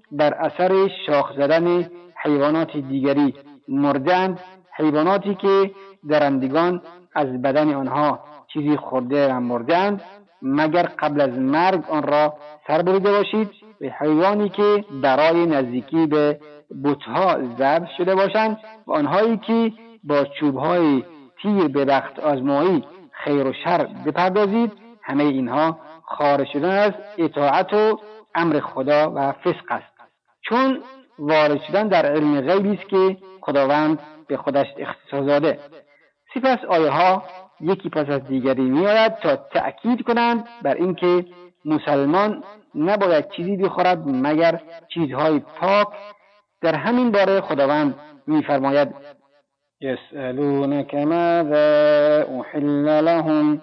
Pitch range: 145-195 Hz